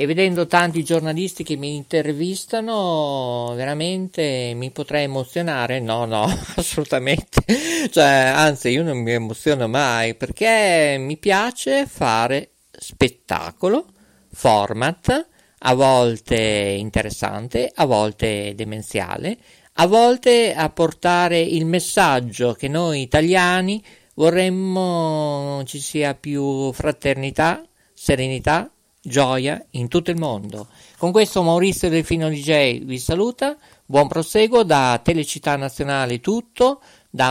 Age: 50-69